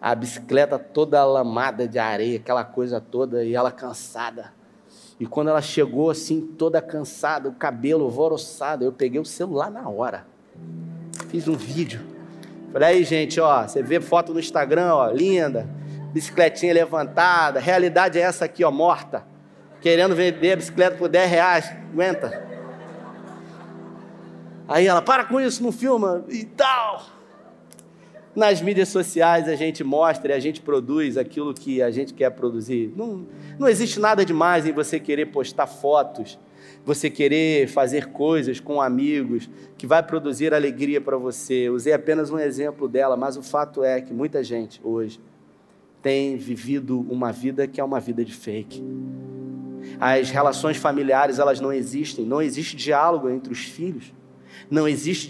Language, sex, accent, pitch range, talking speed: Portuguese, male, Brazilian, 130-170 Hz, 155 wpm